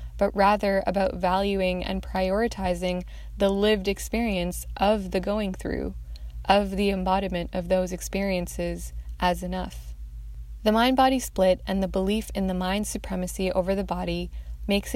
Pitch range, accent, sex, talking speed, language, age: 175-200 Hz, American, female, 140 wpm, English, 20-39